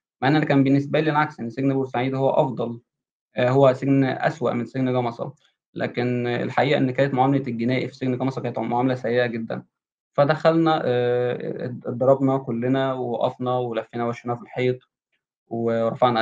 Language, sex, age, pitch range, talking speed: Arabic, male, 20-39, 120-140 Hz, 135 wpm